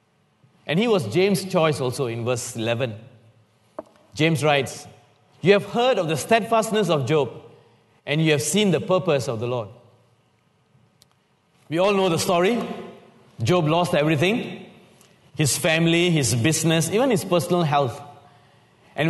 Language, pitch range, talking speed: English, 140-185 Hz, 140 wpm